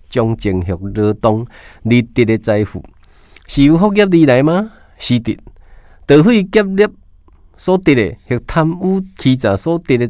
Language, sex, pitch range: Chinese, male, 90-140 Hz